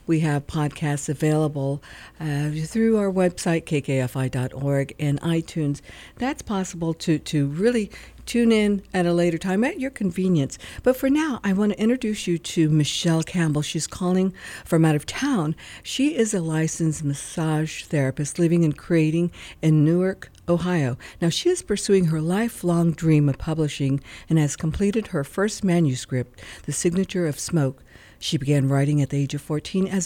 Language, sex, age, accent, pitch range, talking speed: English, female, 60-79, American, 145-195 Hz, 165 wpm